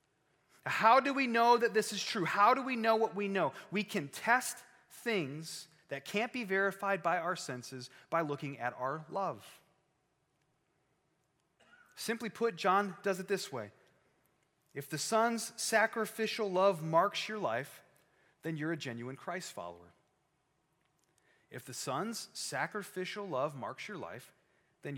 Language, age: English, 30-49